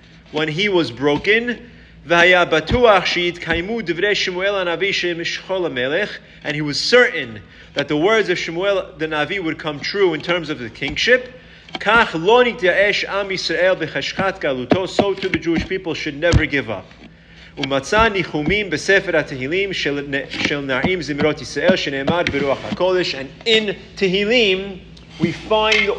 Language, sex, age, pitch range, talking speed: English, male, 30-49, 145-195 Hz, 85 wpm